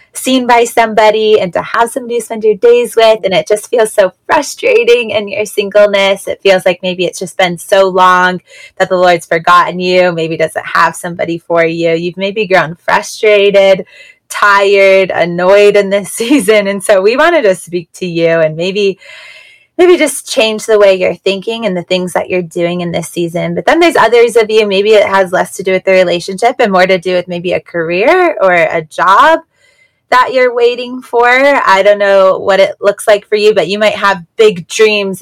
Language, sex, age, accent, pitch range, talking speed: English, female, 20-39, American, 175-215 Hz, 205 wpm